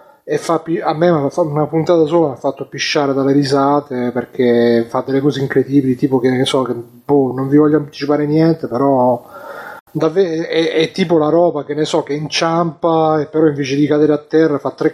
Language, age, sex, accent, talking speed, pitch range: Italian, 30-49, male, native, 205 wpm, 130-155 Hz